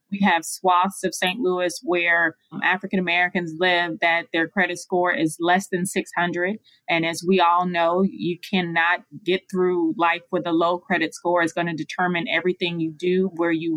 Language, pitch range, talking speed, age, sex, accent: English, 160-180 Hz, 180 wpm, 20-39, female, American